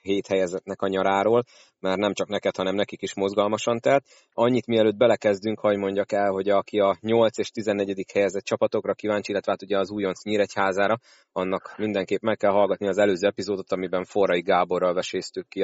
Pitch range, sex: 100-120 Hz, male